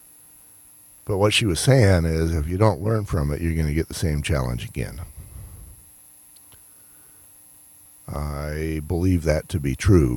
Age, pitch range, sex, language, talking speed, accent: 50-69, 75-95 Hz, male, English, 155 wpm, American